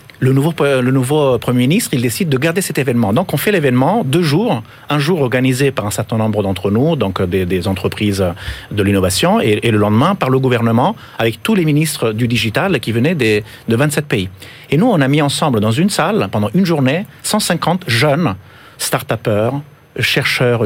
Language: French